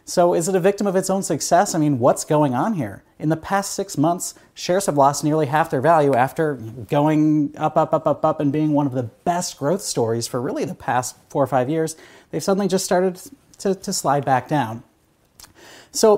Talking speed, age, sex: 225 wpm, 30-49, male